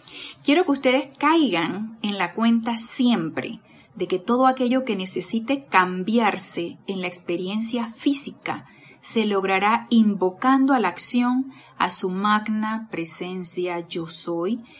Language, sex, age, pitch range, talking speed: Spanish, female, 30-49, 180-235 Hz, 125 wpm